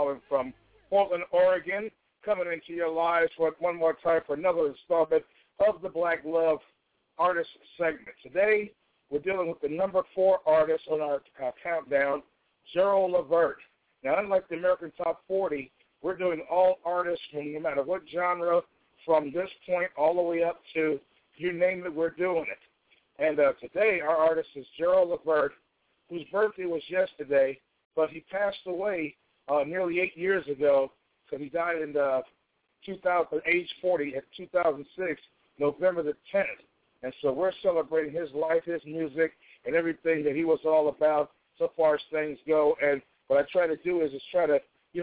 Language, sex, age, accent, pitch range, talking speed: English, male, 60-79, American, 150-180 Hz, 170 wpm